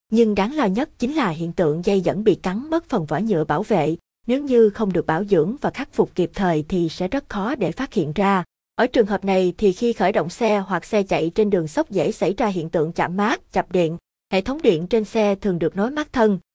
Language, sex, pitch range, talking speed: Vietnamese, female, 180-230 Hz, 260 wpm